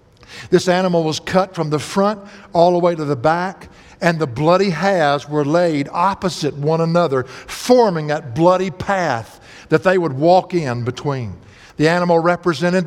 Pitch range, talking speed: 125-180 Hz, 165 wpm